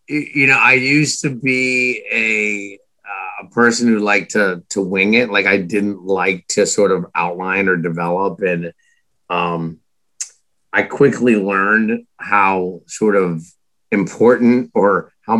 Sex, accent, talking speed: male, American, 140 wpm